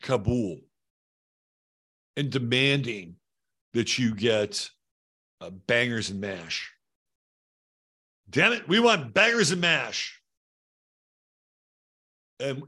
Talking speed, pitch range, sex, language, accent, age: 85 wpm, 105-145 Hz, male, English, American, 60-79